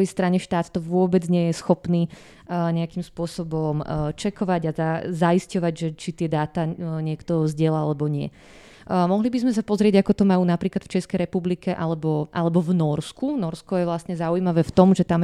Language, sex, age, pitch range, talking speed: Slovak, female, 20-39, 165-185 Hz, 185 wpm